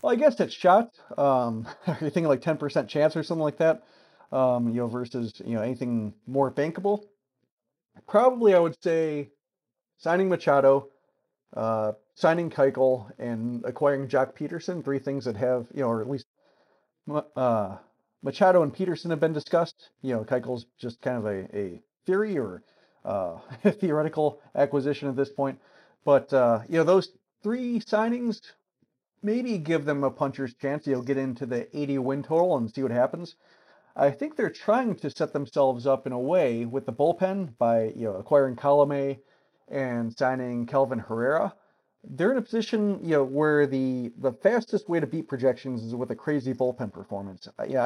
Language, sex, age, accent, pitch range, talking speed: English, male, 40-59, American, 125-160 Hz, 175 wpm